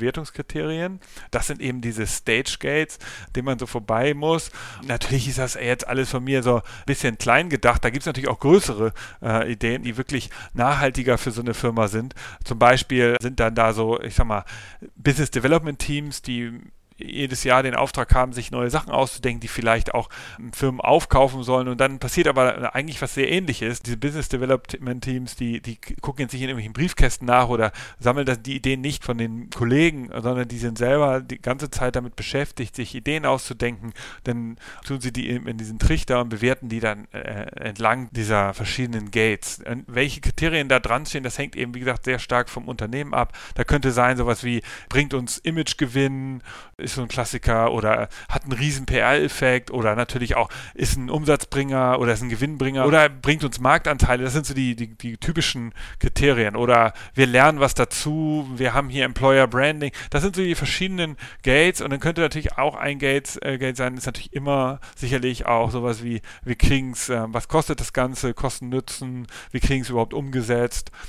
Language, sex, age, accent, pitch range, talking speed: German, male, 40-59, German, 120-135 Hz, 195 wpm